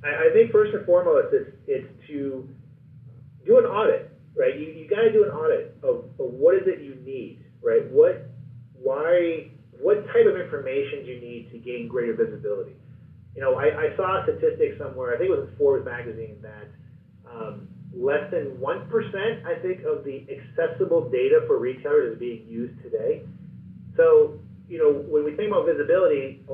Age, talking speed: 30-49, 185 wpm